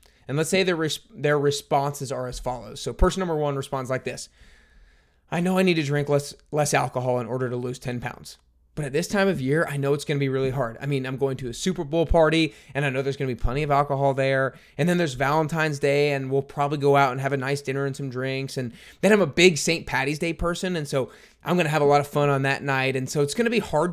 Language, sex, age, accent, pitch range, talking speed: English, male, 20-39, American, 130-160 Hz, 280 wpm